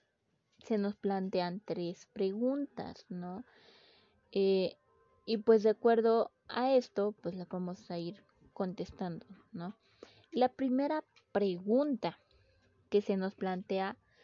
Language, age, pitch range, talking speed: Spanish, 20-39, 185-225 Hz, 115 wpm